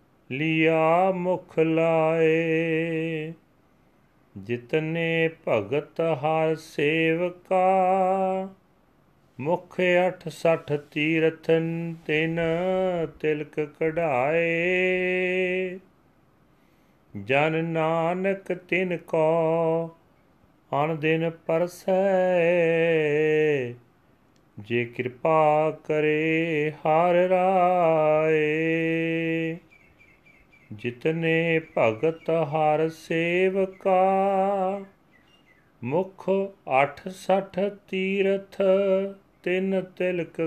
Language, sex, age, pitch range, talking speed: Punjabi, male, 40-59, 155-180 Hz, 50 wpm